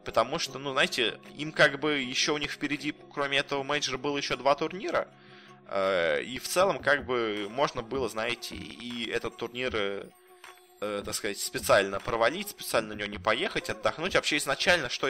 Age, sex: 20-39, male